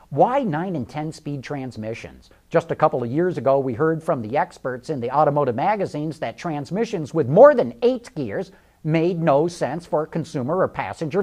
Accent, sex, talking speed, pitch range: American, male, 180 wpm, 145-220 Hz